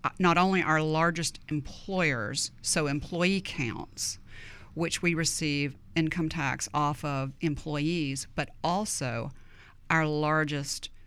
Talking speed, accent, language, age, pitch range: 110 wpm, American, English, 50-69, 140-170 Hz